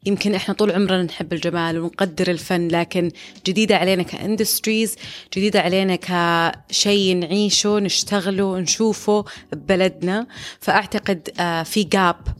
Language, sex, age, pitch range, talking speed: Arabic, female, 30-49, 170-200 Hz, 105 wpm